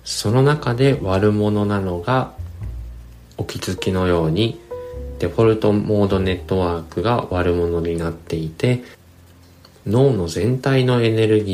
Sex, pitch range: male, 85-115 Hz